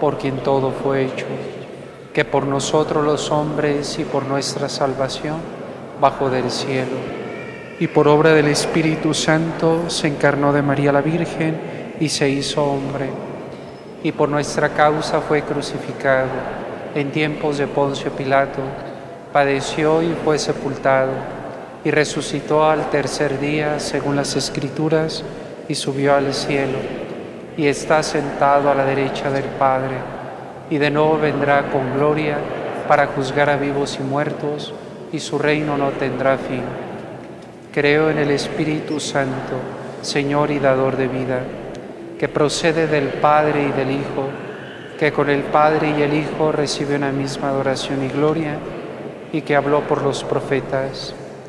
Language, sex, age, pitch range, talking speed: Spanish, male, 40-59, 140-150 Hz, 140 wpm